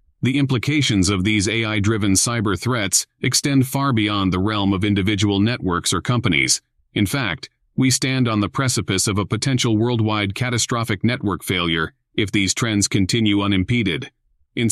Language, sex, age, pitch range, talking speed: English, male, 40-59, 100-125 Hz, 150 wpm